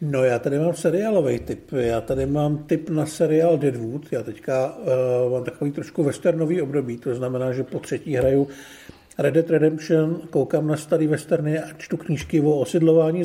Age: 50-69